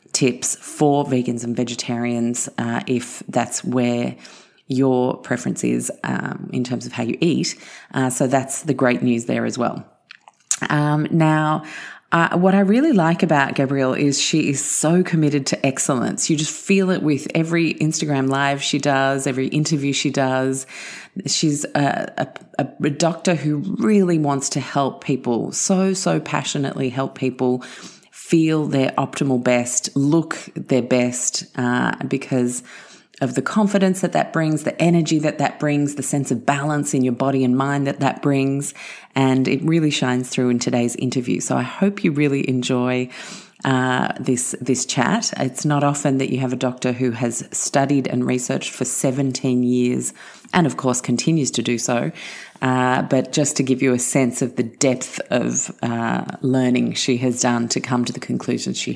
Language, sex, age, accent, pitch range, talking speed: English, female, 30-49, Australian, 125-155 Hz, 175 wpm